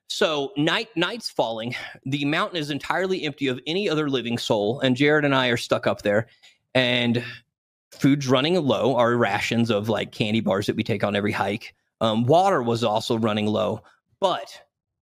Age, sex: 30-49, male